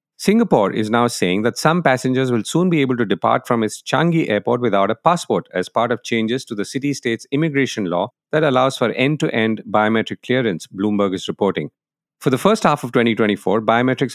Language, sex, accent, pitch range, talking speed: English, male, Indian, 105-140 Hz, 190 wpm